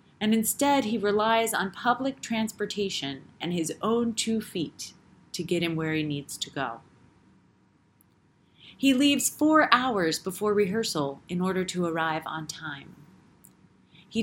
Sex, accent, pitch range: female, American, 165-225 Hz